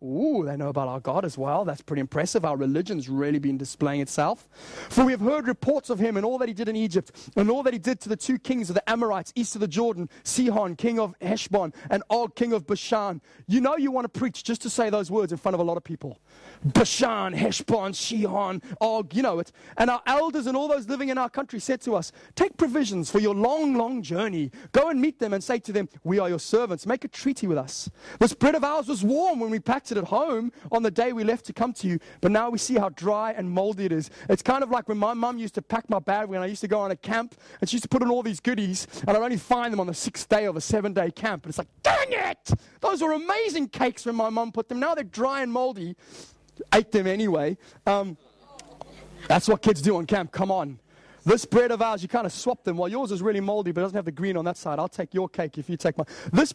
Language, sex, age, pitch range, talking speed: English, male, 30-49, 185-245 Hz, 270 wpm